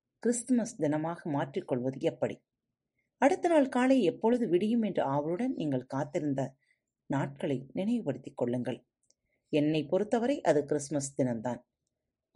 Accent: native